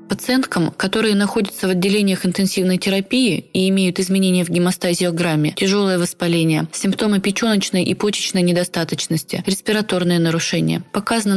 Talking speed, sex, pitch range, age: 115 wpm, female, 175-210 Hz, 20-39